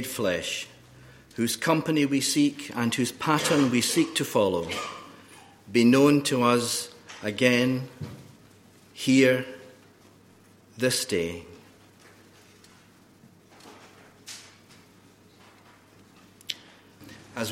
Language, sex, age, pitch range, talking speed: English, male, 50-69, 110-130 Hz, 70 wpm